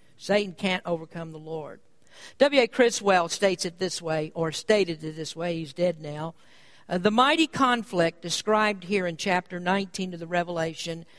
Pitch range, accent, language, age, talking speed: 170-230 Hz, American, English, 50-69, 165 wpm